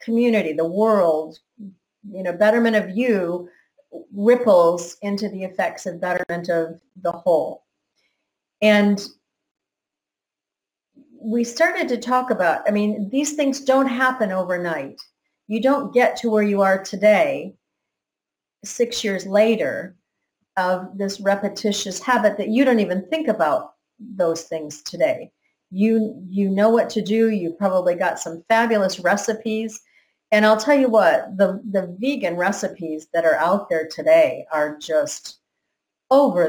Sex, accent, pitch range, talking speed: female, American, 190-255 Hz, 135 wpm